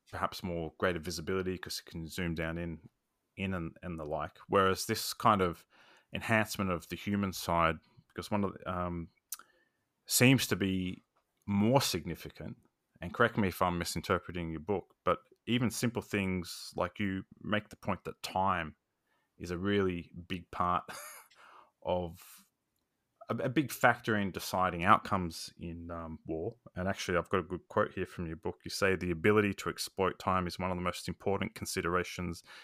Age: 20-39